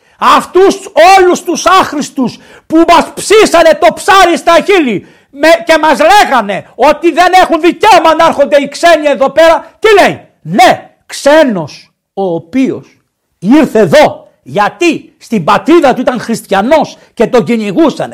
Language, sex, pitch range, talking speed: Greek, male, 200-315 Hz, 135 wpm